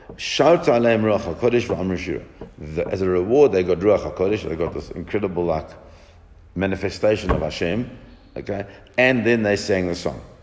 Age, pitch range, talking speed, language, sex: 50-69, 85-110 Hz, 125 wpm, English, male